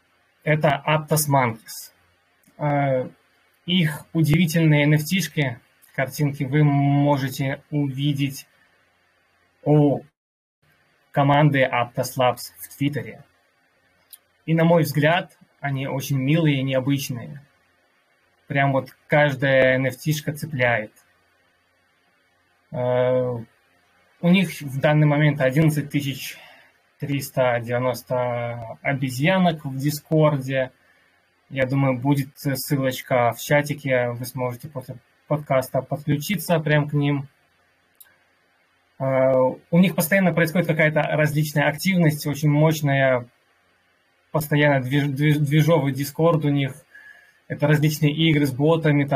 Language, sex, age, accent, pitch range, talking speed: Russian, male, 20-39, native, 125-150 Hz, 90 wpm